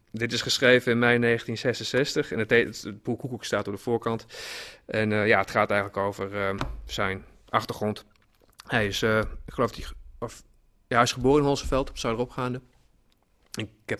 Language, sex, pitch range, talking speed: Dutch, male, 105-125 Hz, 175 wpm